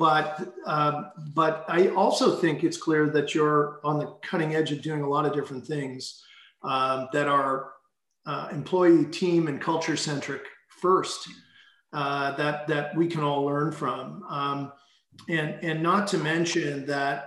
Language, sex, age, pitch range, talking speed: English, male, 40-59, 145-165 Hz, 160 wpm